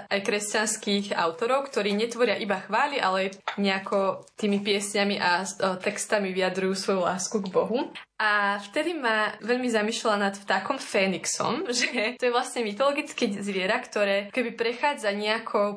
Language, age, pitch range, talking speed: Slovak, 20-39, 195-220 Hz, 135 wpm